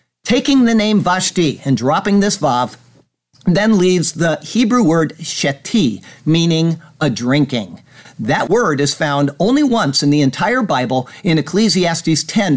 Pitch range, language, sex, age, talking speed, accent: 145-195 Hz, English, male, 50-69, 145 wpm, American